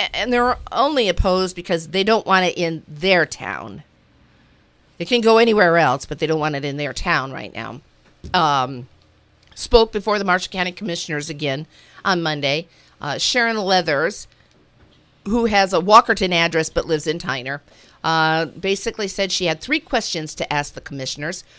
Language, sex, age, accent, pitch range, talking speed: English, female, 50-69, American, 150-195 Hz, 165 wpm